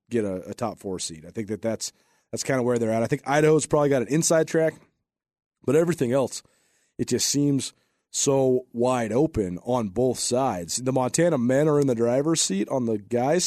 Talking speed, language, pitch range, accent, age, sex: 210 wpm, English, 125-160 Hz, American, 30-49, male